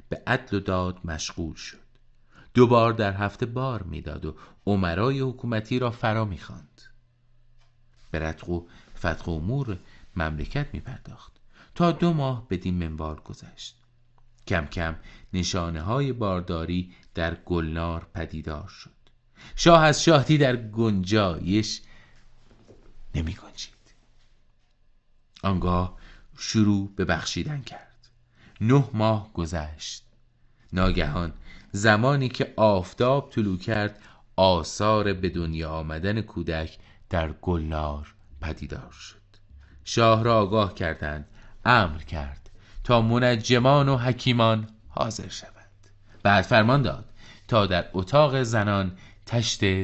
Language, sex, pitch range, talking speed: Persian, male, 90-120 Hz, 110 wpm